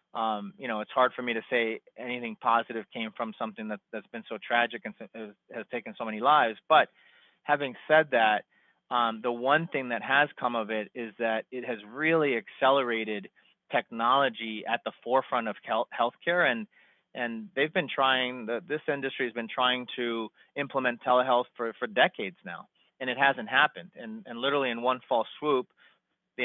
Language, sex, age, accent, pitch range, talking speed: English, male, 30-49, American, 115-140 Hz, 180 wpm